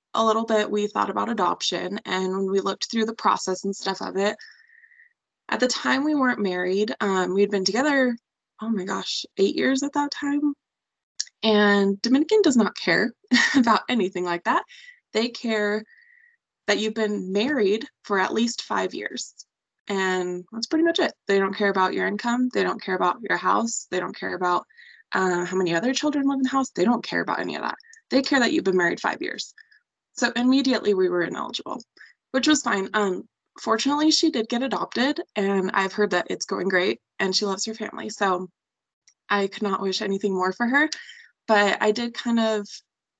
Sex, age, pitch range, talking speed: female, 20-39, 195-255 Hz, 195 wpm